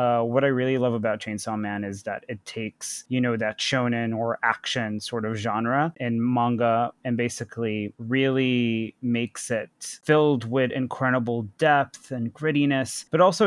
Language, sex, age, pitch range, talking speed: English, male, 30-49, 115-140 Hz, 160 wpm